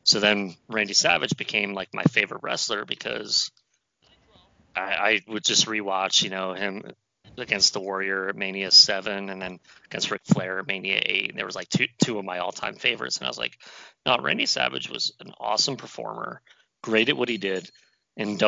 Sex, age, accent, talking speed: male, 30-49, American, 190 wpm